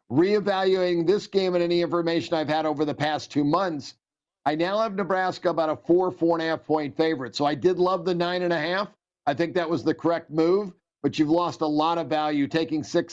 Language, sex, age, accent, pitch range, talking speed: English, male, 50-69, American, 150-175 Hz, 235 wpm